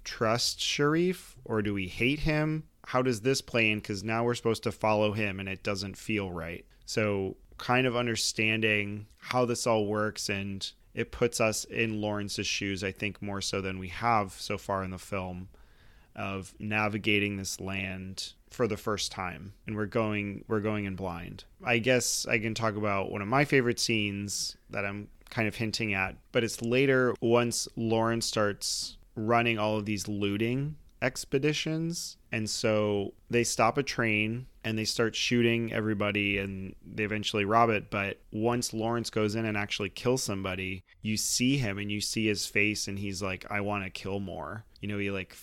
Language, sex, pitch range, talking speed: English, male, 100-115 Hz, 185 wpm